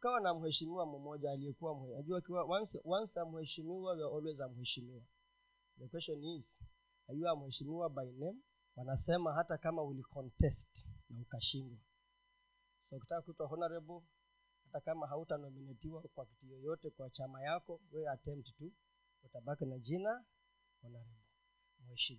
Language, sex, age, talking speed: Swahili, male, 30-49, 130 wpm